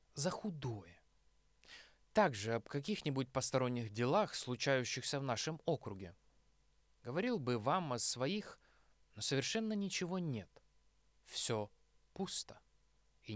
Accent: native